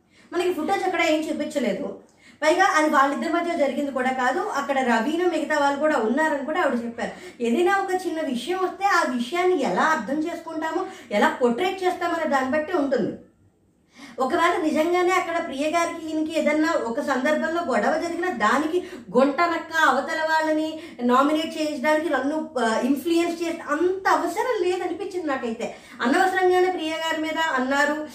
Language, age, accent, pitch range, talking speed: Telugu, 20-39, native, 270-340 Hz, 140 wpm